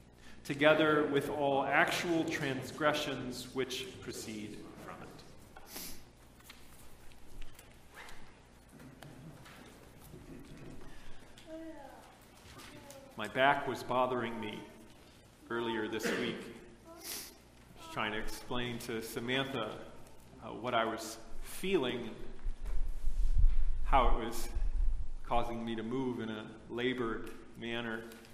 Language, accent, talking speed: English, American, 85 wpm